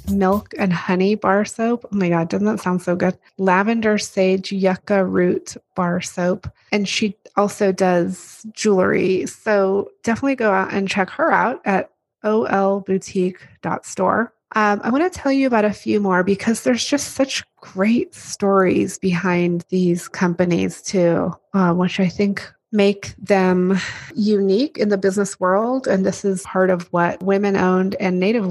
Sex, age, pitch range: female, 30-49, 185-215 Hz